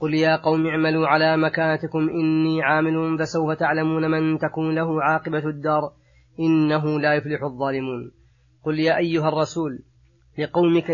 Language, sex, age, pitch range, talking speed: Arabic, female, 30-49, 150-160 Hz, 130 wpm